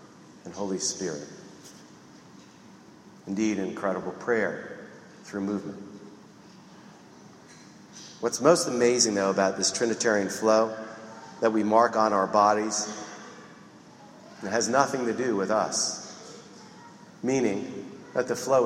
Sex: male